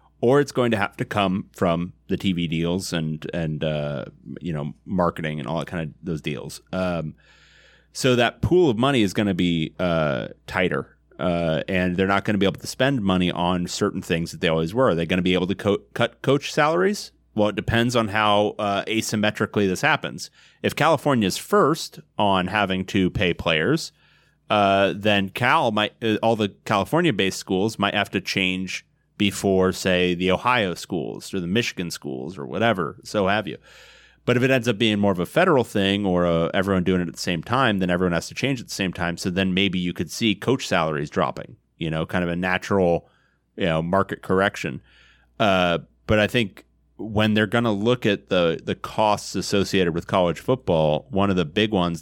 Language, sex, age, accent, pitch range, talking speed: English, male, 30-49, American, 85-105 Hz, 210 wpm